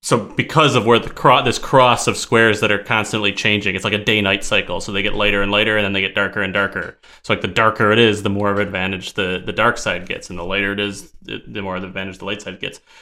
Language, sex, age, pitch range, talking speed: English, male, 30-49, 105-130 Hz, 280 wpm